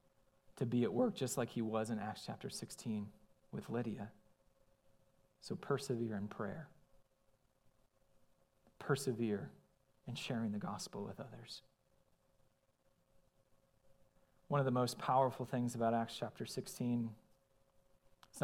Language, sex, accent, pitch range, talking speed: English, male, American, 120-145 Hz, 115 wpm